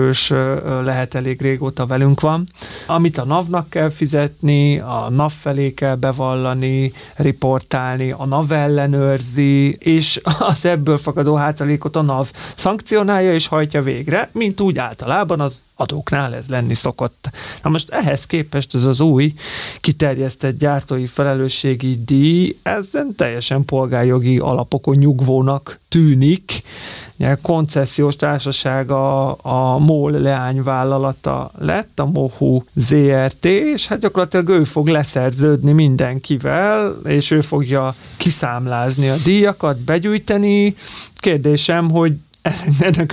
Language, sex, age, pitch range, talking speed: Hungarian, male, 30-49, 130-160 Hz, 115 wpm